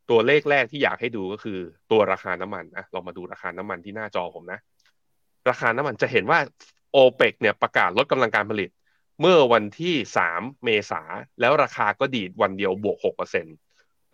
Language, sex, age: Thai, male, 20-39